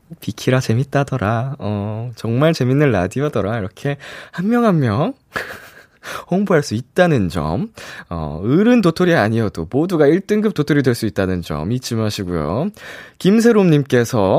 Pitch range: 125-200 Hz